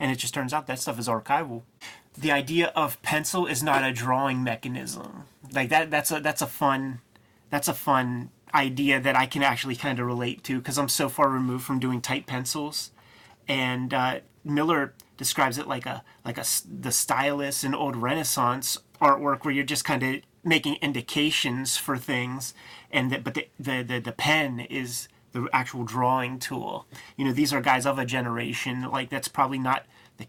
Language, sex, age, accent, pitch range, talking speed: English, male, 30-49, American, 125-145 Hz, 190 wpm